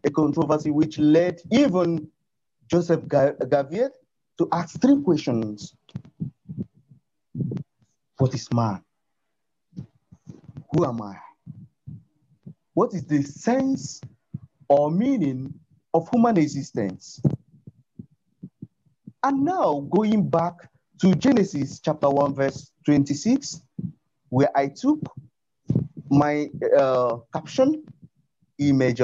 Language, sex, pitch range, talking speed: English, male, 135-175 Hz, 90 wpm